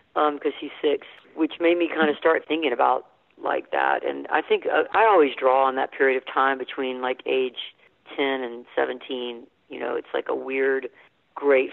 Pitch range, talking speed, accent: 135-200 Hz, 200 wpm, American